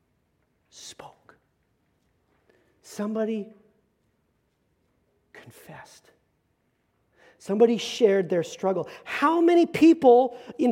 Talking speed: 60 wpm